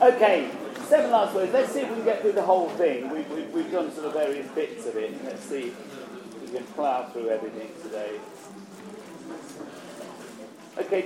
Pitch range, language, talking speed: 145-225 Hz, English, 185 wpm